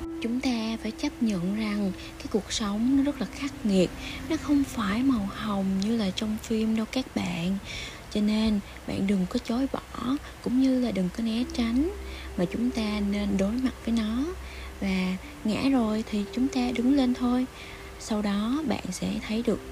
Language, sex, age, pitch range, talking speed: Vietnamese, female, 20-39, 190-245 Hz, 190 wpm